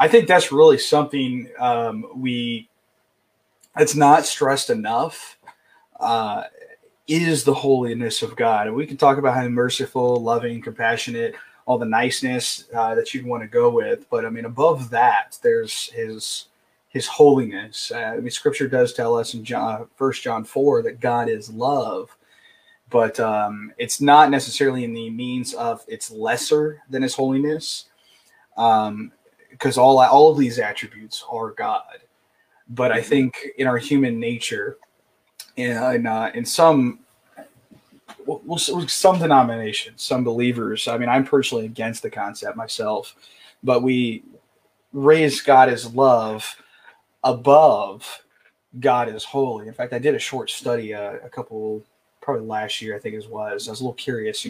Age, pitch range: 20-39, 115-150 Hz